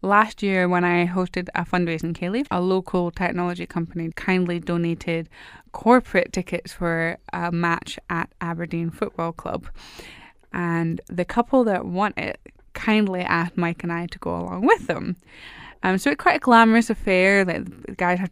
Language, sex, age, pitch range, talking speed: English, female, 20-39, 165-185 Hz, 165 wpm